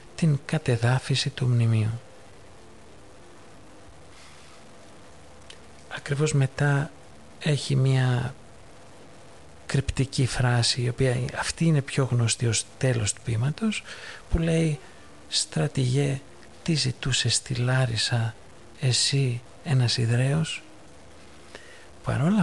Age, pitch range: 50-69, 105-140 Hz